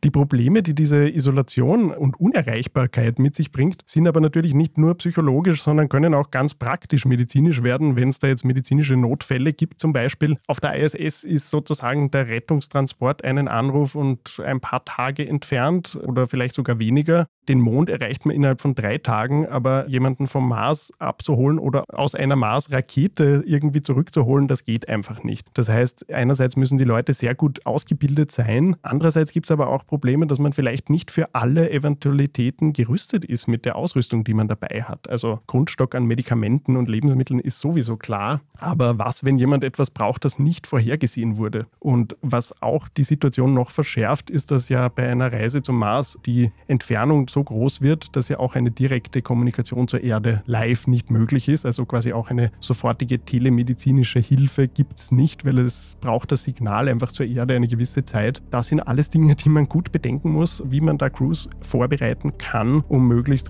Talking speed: 185 wpm